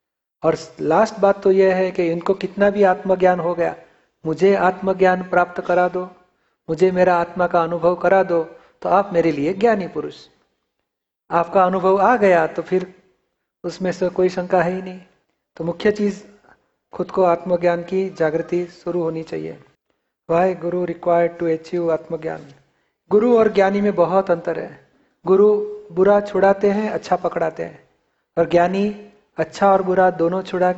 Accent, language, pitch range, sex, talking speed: native, Hindi, 170-195 Hz, male, 160 wpm